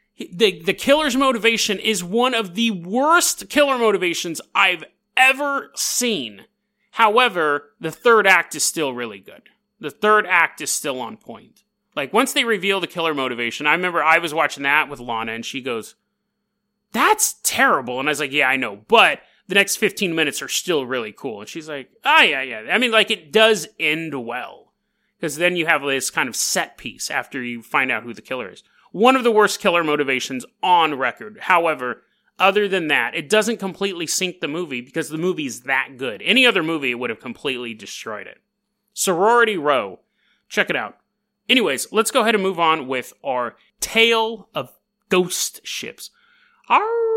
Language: English